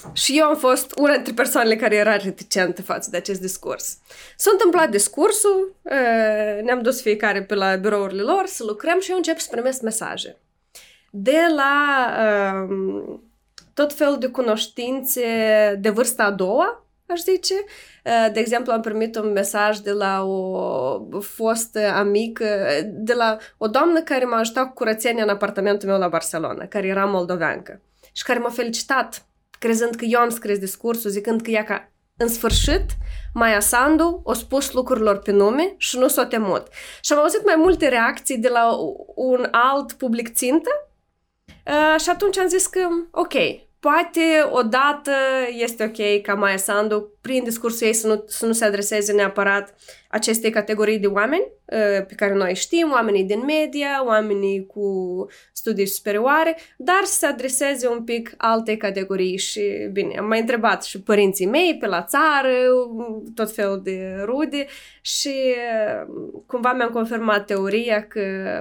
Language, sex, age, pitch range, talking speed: Romanian, female, 20-39, 205-275 Hz, 155 wpm